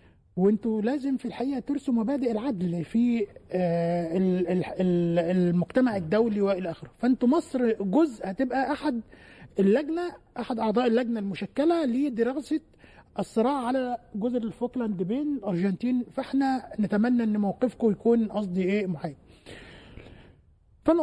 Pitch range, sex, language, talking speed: 195-265 Hz, male, Arabic, 105 wpm